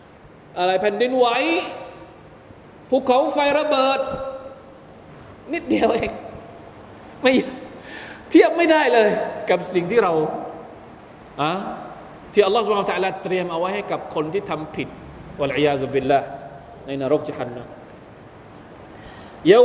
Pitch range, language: 155-245 Hz, Thai